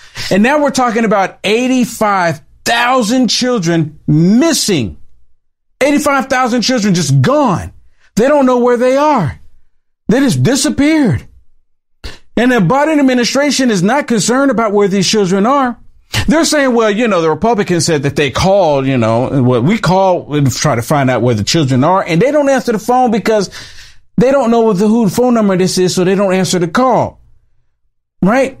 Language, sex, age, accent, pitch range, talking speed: English, male, 50-69, American, 170-250 Hz, 170 wpm